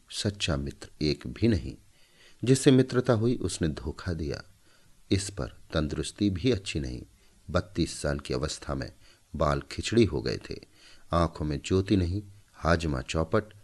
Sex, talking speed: male, 145 wpm